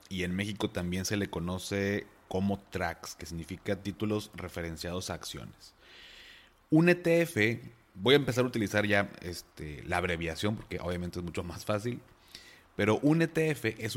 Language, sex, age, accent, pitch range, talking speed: Spanish, male, 30-49, Mexican, 90-115 Hz, 150 wpm